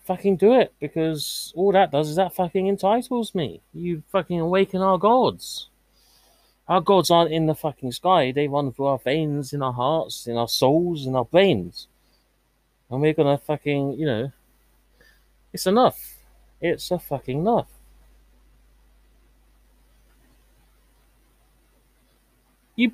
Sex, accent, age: male, British, 30-49